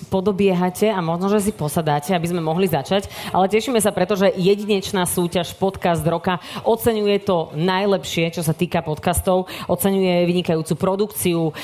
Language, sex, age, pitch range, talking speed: Slovak, female, 40-59, 155-190 Hz, 145 wpm